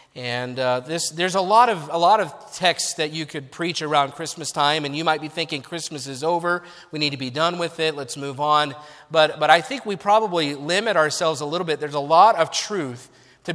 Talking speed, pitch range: 250 wpm, 145-185 Hz